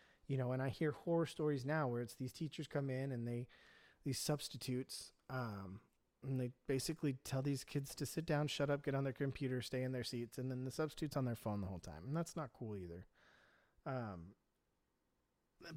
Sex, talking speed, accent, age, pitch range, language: male, 205 wpm, American, 30-49, 115-145 Hz, English